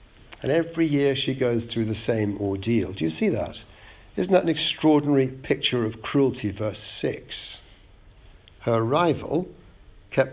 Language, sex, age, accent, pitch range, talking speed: English, male, 60-79, British, 105-140 Hz, 145 wpm